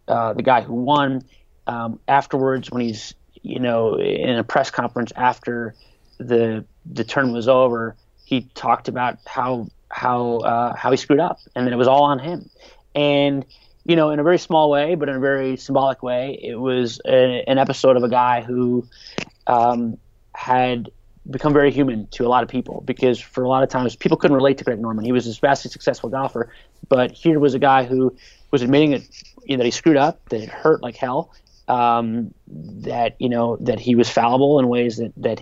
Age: 30-49